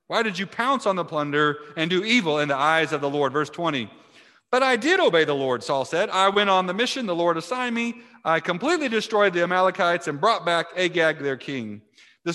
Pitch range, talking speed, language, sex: 110-170 Hz, 230 wpm, English, male